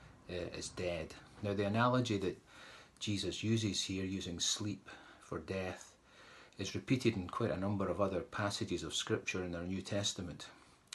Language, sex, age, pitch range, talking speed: English, male, 40-59, 95-105 Hz, 155 wpm